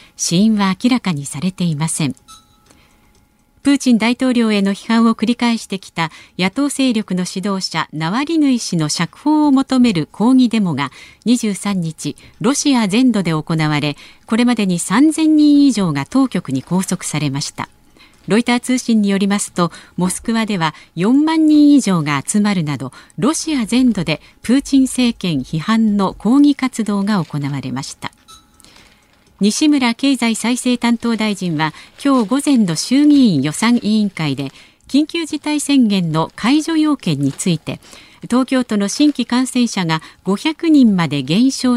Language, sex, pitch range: Japanese, female, 170-255 Hz